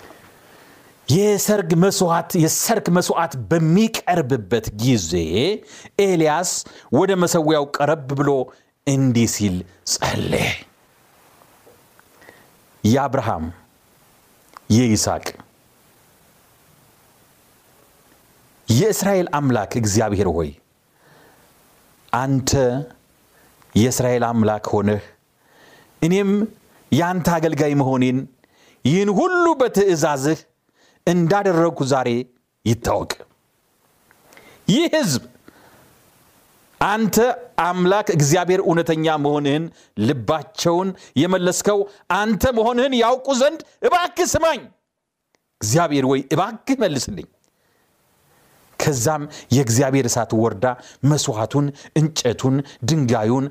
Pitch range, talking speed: 125-190 Hz, 70 wpm